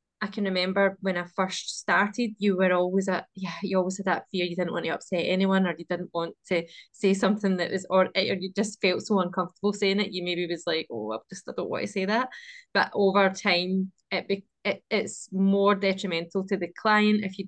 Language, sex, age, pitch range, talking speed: English, female, 20-39, 175-195 Hz, 235 wpm